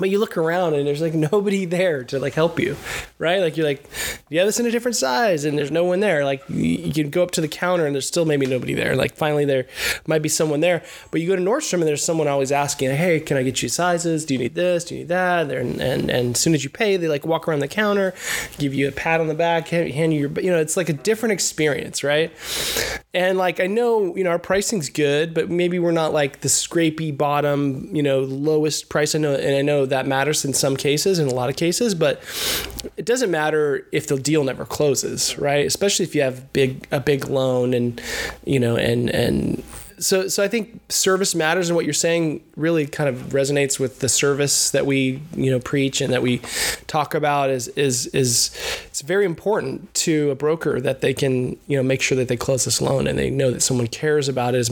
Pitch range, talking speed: 135-170 Hz, 245 wpm